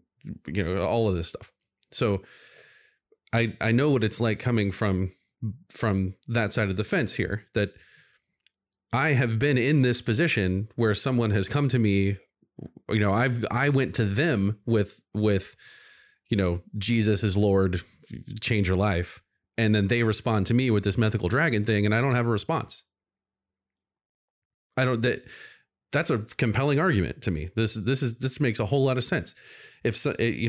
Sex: male